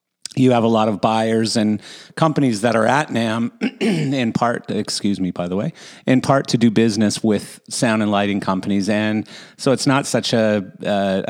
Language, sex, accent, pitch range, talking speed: English, male, American, 95-110 Hz, 190 wpm